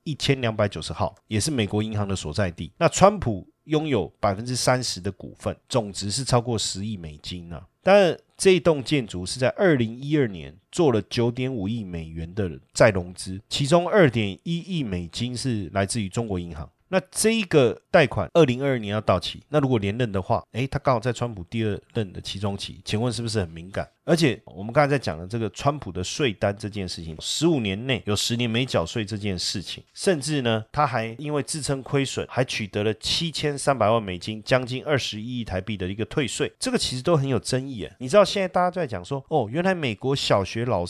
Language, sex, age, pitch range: Chinese, male, 30-49, 100-140 Hz